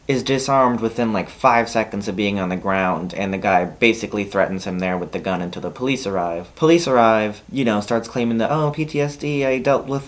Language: English